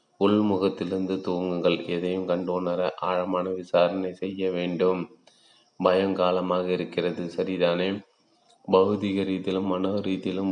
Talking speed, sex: 90 wpm, male